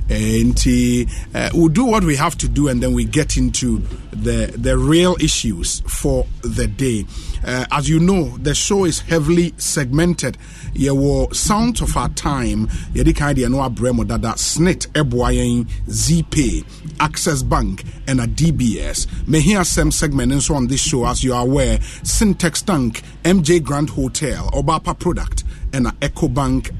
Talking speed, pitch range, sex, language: 150 wpm, 110-160 Hz, male, English